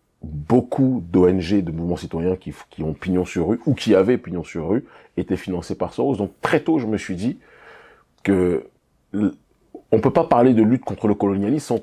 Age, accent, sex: 30-49, French, male